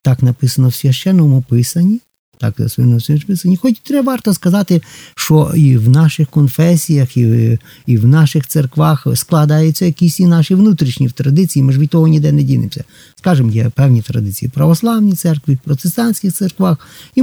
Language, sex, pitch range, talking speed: Ukrainian, male, 125-165 Hz, 160 wpm